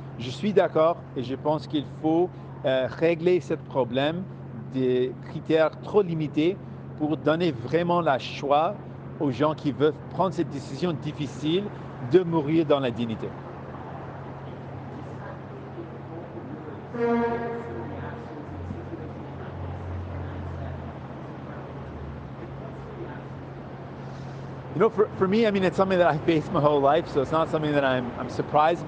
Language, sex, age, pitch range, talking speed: French, male, 50-69, 135-170 Hz, 115 wpm